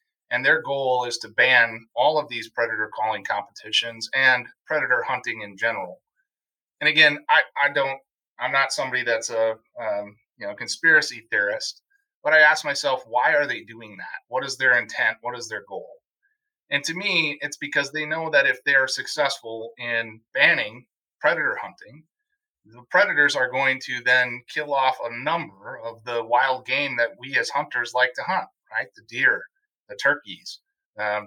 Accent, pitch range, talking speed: American, 120-165 Hz, 175 wpm